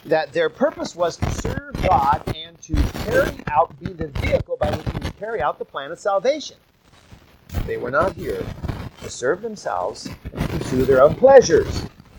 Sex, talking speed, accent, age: male, 170 wpm, American, 50-69